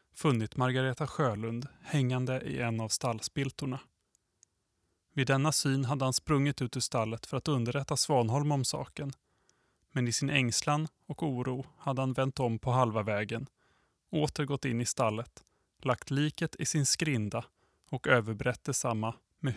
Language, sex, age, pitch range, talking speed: Swedish, male, 20-39, 120-140 Hz, 150 wpm